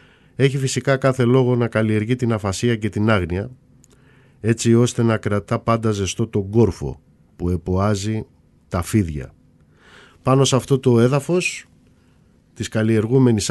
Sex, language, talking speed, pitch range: male, Greek, 135 wpm, 95-120 Hz